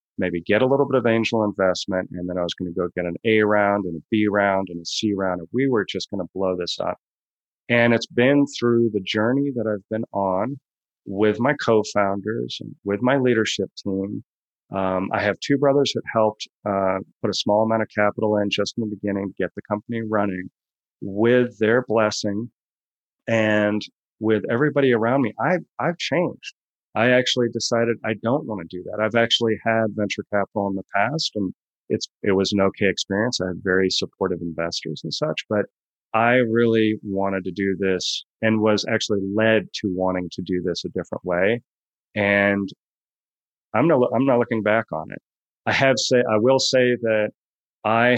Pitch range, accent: 95-115 Hz, American